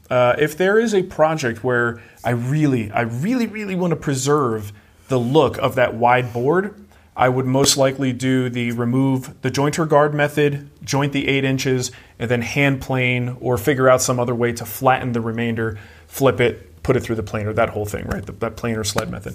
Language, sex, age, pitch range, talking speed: English, male, 30-49, 120-145 Hz, 200 wpm